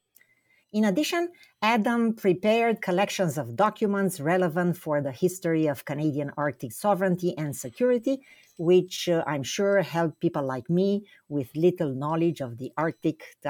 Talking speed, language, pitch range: 140 wpm, English, 150-205 Hz